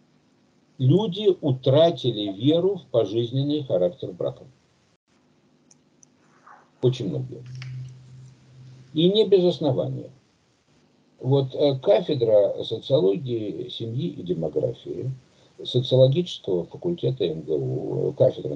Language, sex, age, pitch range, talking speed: Russian, male, 60-79, 120-155 Hz, 75 wpm